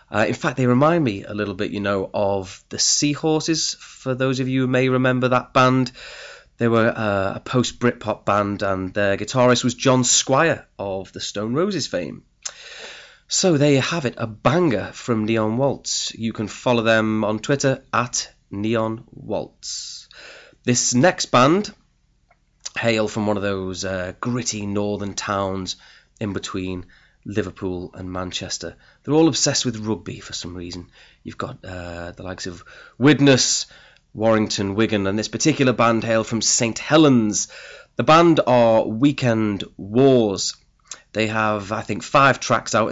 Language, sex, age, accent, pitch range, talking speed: English, male, 30-49, British, 100-125 Hz, 160 wpm